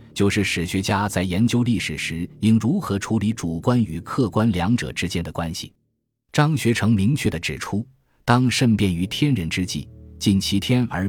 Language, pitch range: Chinese, 85-115 Hz